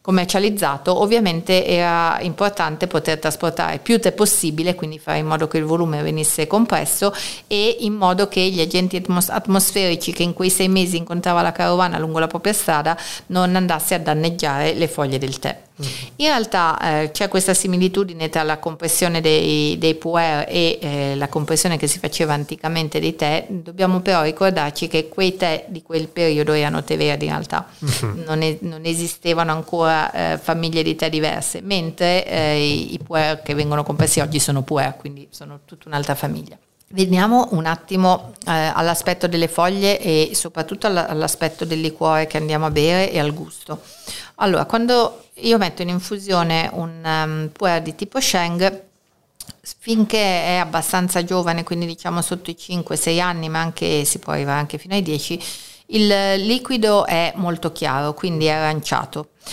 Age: 50-69